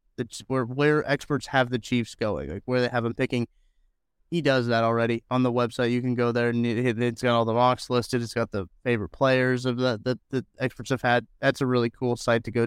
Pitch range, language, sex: 115-135 Hz, English, male